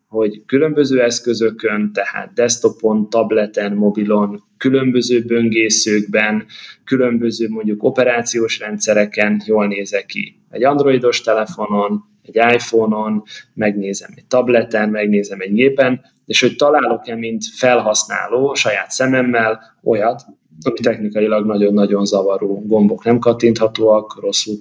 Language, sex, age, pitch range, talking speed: Hungarian, male, 20-39, 105-130 Hz, 105 wpm